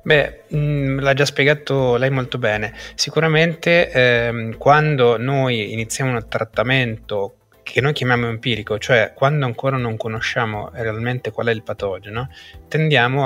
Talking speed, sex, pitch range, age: 135 wpm, male, 110-130 Hz, 20-39